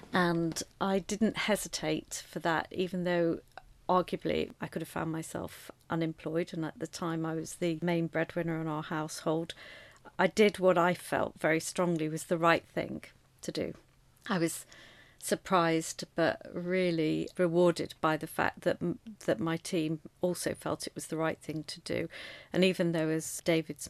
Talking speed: 170 wpm